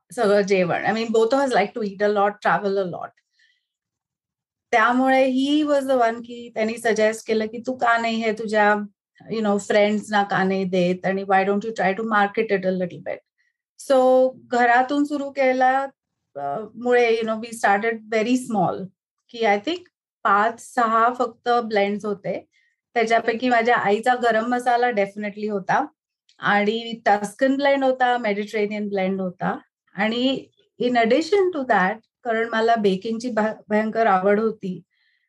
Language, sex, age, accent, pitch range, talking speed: Marathi, female, 30-49, native, 205-245 Hz, 160 wpm